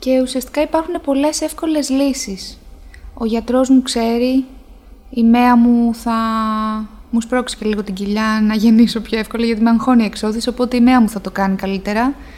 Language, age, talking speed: Greek, 20-39, 180 wpm